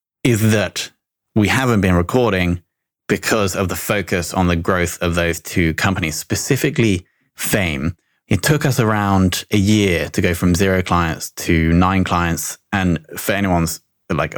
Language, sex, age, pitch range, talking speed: English, male, 20-39, 85-105 Hz, 155 wpm